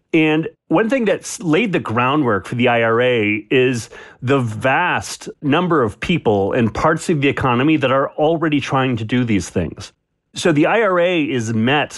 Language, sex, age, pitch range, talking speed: English, male, 40-59, 110-155 Hz, 170 wpm